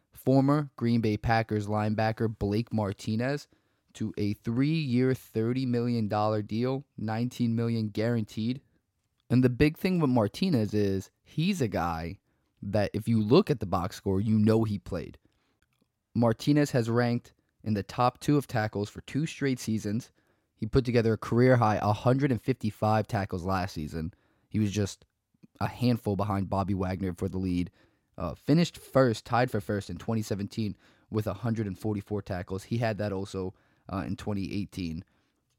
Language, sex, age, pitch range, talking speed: English, male, 20-39, 100-120 Hz, 150 wpm